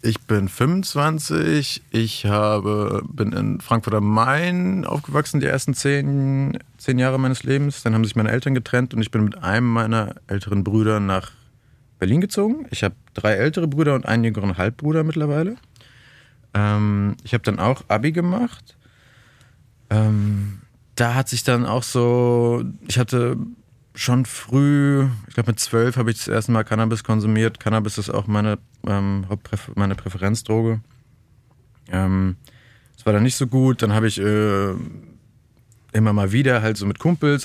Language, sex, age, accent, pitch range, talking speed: German, male, 30-49, German, 100-125 Hz, 155 wpm